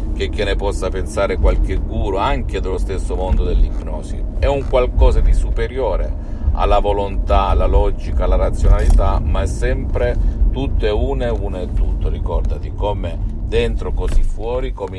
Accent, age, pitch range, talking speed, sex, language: native, 50-69, 80-110 Hz, 150 wpm, male, Italian